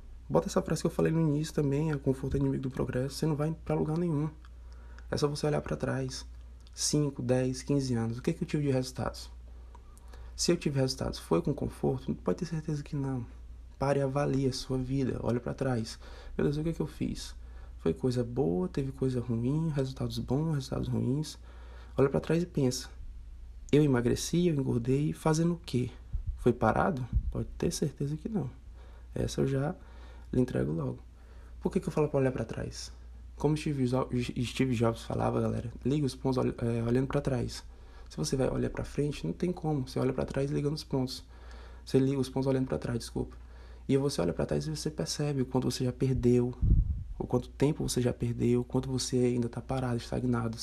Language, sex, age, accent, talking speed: Portuguese, male, 20-39, Brazilian, 205 wpm